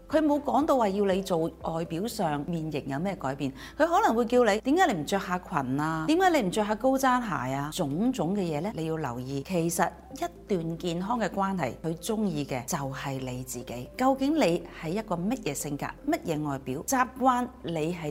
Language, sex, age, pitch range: Chinese, female, 40-59, 145-225 Hz